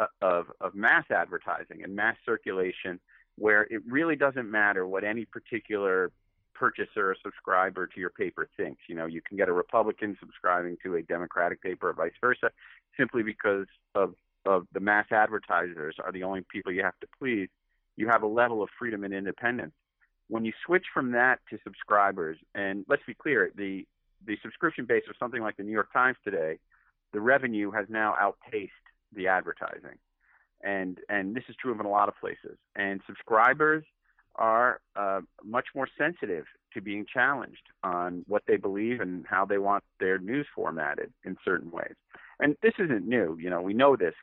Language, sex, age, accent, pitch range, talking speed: English, male, 40-59, American, 100-140 Hz, 180 wpm